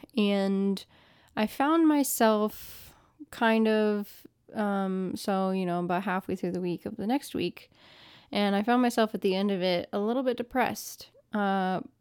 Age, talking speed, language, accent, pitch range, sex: 10-29, 165 wpm, English, American, 190-235 Hz, female